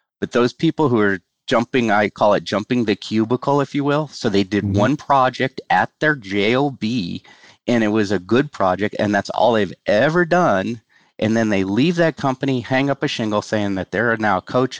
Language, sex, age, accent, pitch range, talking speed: English, male, 40-59, American, 95-120 Hz, 205 wpm